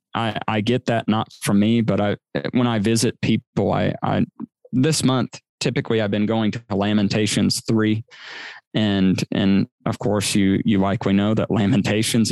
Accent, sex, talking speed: American, male, 170 wpm